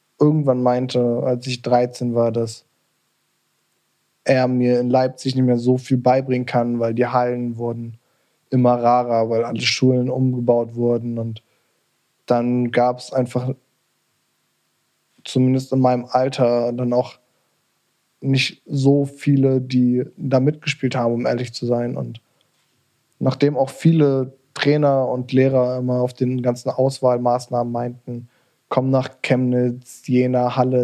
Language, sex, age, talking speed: German, male, 10-29, 130 wpm